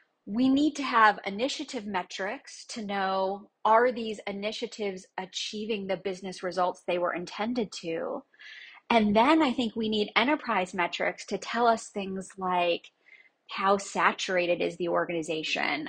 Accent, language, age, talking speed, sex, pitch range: American, English, 30-49, 140 wpm, female, 195-245 Hz